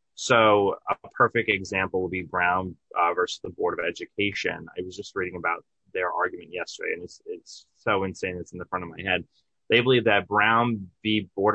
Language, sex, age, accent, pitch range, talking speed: English, male, 30-49, American, 95-115 Hz, 205 wpm